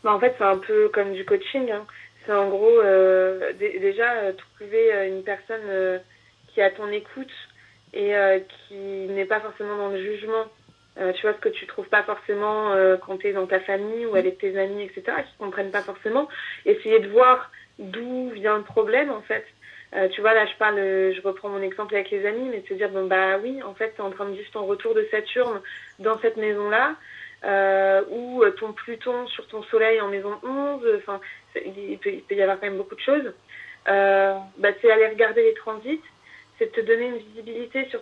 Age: 20-39